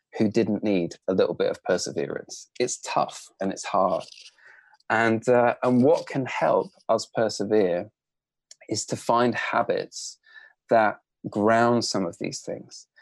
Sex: male